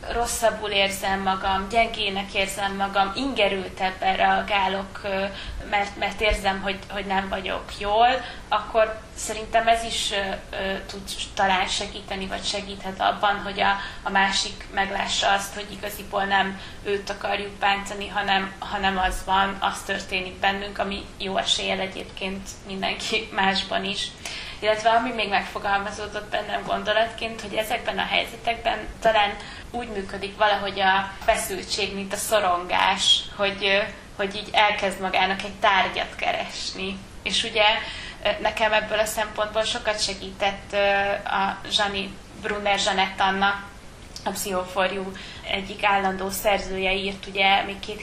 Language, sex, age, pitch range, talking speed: Hungarian, female, 20-39, 195-210 Hz, 125 wpm